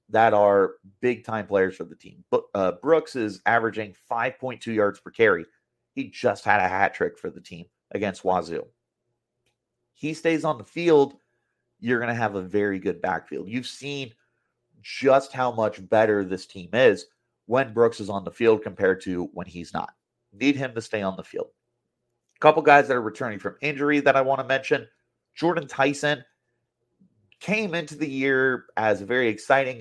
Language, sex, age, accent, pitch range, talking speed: English, male, 30-49, American, 105-130 Hz, 180 wpm